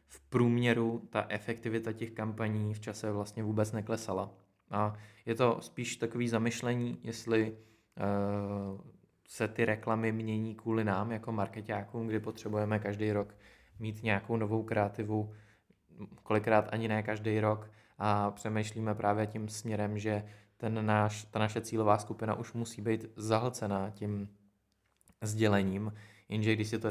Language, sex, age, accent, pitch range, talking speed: Czech, male, 20-39, Slovak, 105-110 Hz, 140 wpm